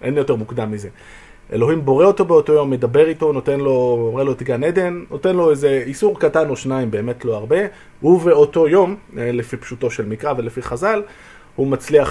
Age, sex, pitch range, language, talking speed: 30-49, male, 120-165 Hz, Hebrew, 190 wpm